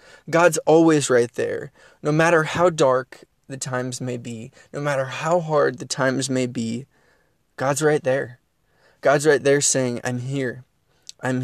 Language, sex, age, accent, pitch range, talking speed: English, male, 20-39, American, 130-155 Hz, 155 wpm